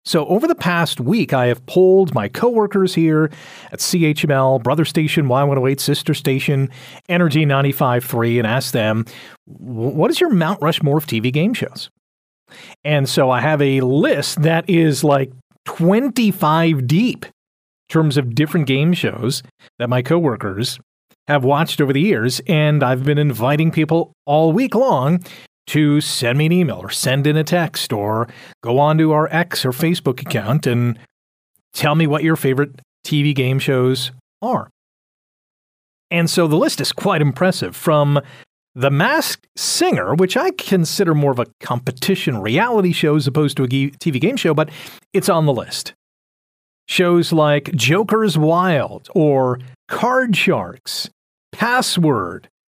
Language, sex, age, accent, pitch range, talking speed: English, male, 40-59, American, 130-175 Hz, 155 wpm